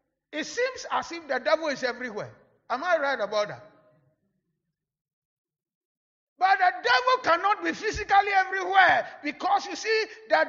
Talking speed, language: 135 wpm, English